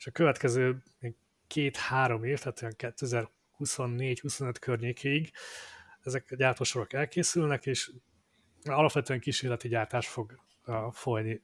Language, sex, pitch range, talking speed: Hungarian, male, 120-135 Hz, 90 wpm